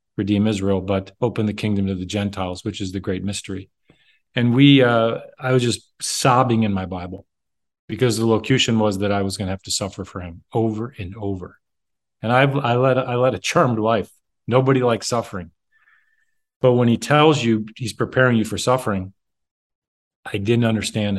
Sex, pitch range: male, 100-130 Hz